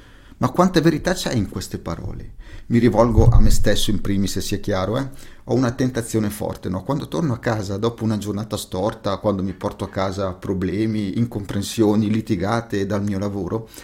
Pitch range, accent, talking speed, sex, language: 100-125 Hz, native, 180 wpm, male, Italian